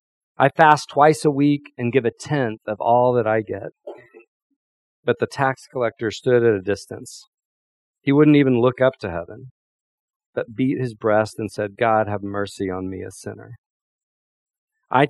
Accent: American